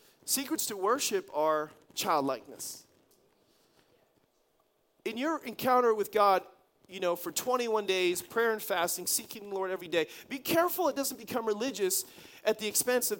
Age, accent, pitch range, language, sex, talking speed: 40-59, American, 190-260 Hz, English, male, 150 wpm